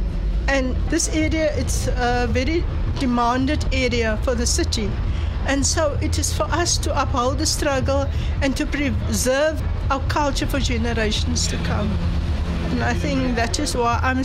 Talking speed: 155 wpm